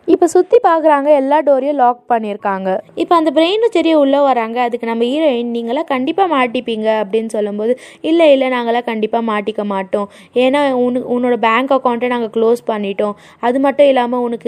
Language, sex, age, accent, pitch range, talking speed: Tamil, female, 20-39, native, 220-275 Hz, 55 wpm